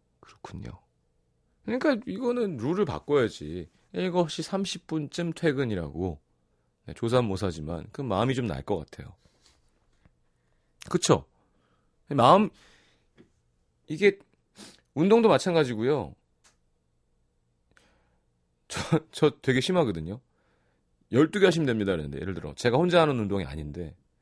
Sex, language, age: male, Korean, 30-49